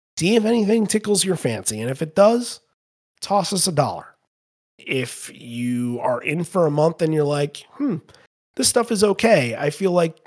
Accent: American